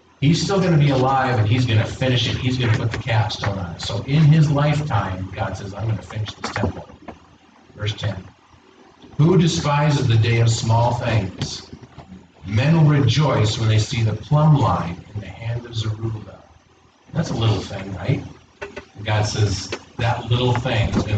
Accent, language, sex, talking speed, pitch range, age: American, English, male, 190 wpm, 100-125 Hz, 40-59